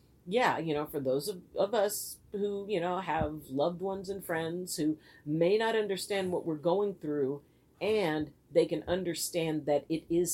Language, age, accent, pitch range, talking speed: English, 50-69, American, 145-175 Hz, 180 wpm